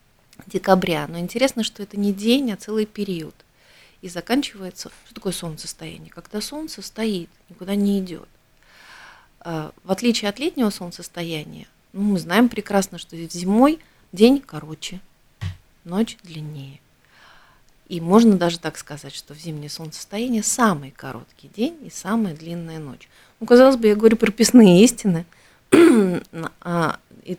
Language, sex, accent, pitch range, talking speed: Russian, female, native, 160-215 Hz, 130 wpm